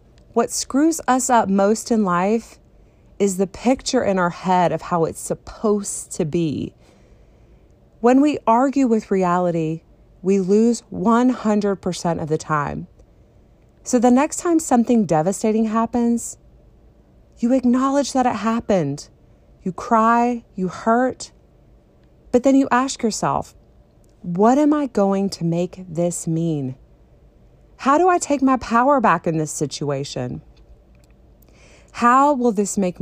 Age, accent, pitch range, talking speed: 30-49, American, 165-235 Hz, 135 wpm